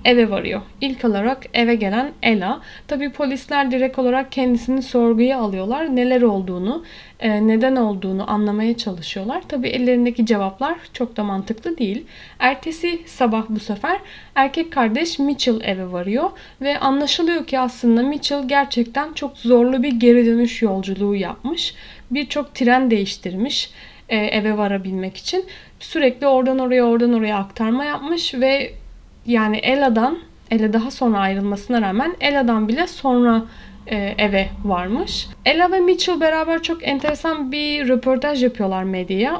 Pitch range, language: 220-275 Hz, Turkish